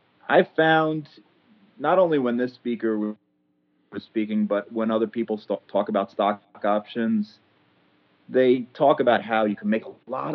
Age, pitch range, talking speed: 30-49, 100-125 Hz, 150 wpm